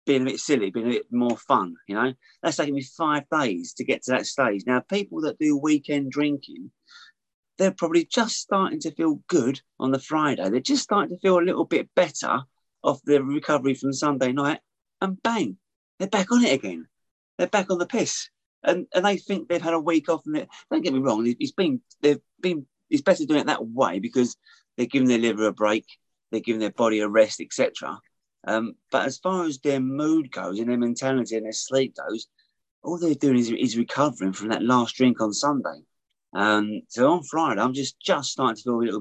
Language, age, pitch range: English, 30-49, 115-175 Hz